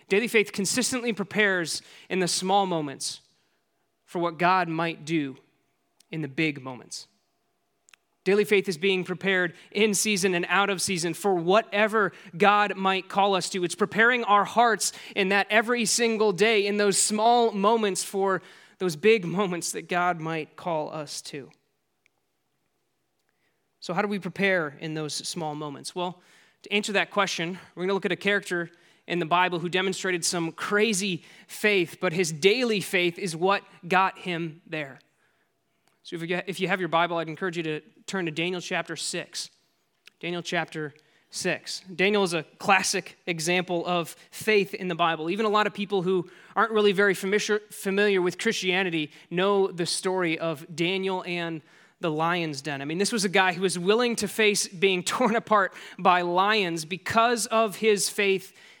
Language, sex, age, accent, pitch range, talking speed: English, male, 20-39, American, 170-205 Hz, 170 wpm